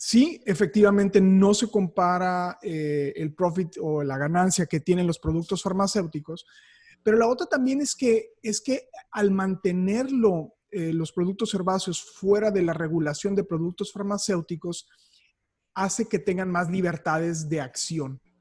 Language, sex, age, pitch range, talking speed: Spanish, male, 30-49, 170-215 Hz, 135 wpm